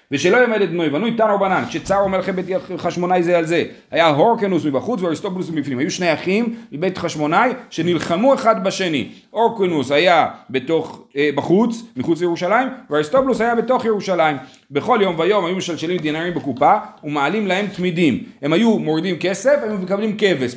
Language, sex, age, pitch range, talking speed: Hebrew, male, 40-59, 150-200 Hz, 165 wpm